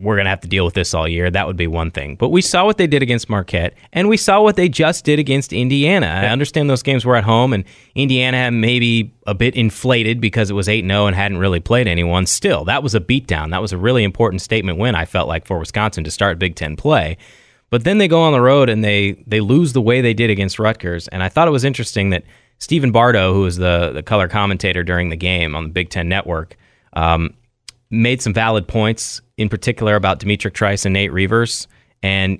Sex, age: male, 30-49